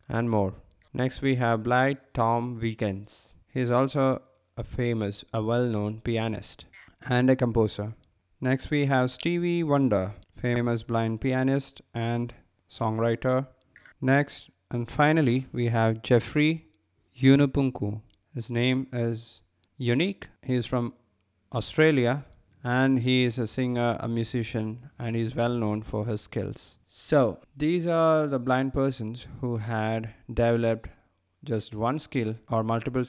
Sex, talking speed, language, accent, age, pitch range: male, 130 wpm, English, Indian, 20-39, 110-130 Hz